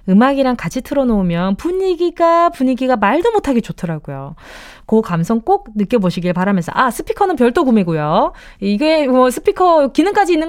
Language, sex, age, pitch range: Korean, female, 20-39, 200-320 Hz